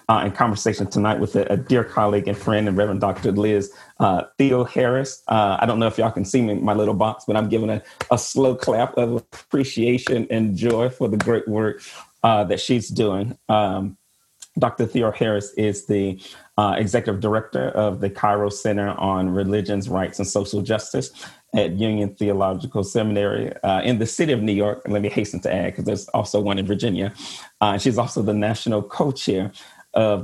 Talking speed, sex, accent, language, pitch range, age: 200 wpm, male, American, English, 100-115 Hz, 30-49